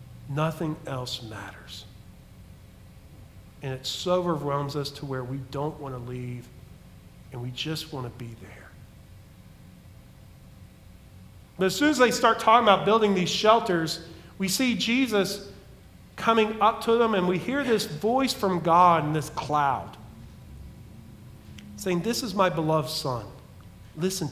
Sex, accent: male, American